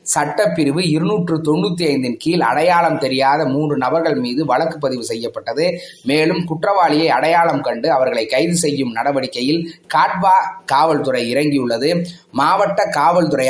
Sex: male